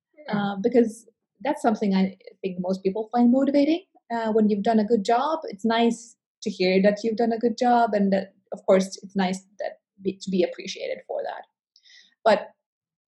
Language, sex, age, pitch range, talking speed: English, female, 20-39, 195-235 Hz, 185 wpm